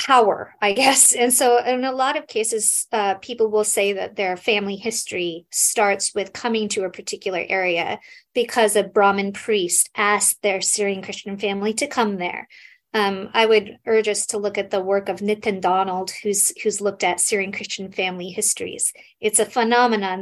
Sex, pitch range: female, 195-230 Hz